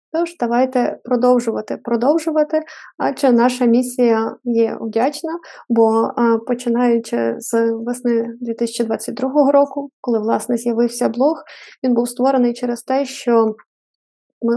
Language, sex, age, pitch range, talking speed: Ukrainian, female, 20-39, 230-255 Hz, 105 wpm